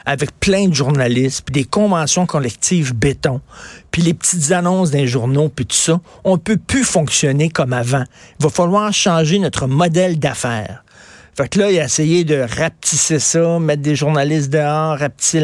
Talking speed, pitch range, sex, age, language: 180 wpm, 135-180 Hz, male, 50-69, French